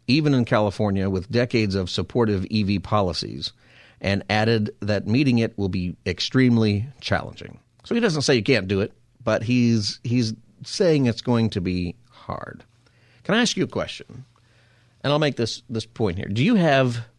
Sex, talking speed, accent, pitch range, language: male, 180 wpm, American, 100-125 Hz, English